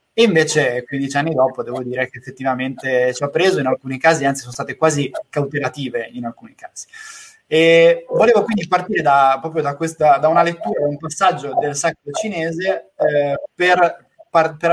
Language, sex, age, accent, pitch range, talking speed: Italian, male, 20-39, native, 135-175 Hz, 175 wpm